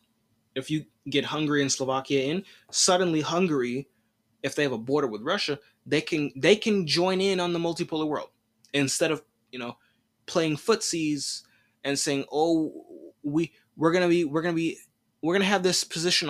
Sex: male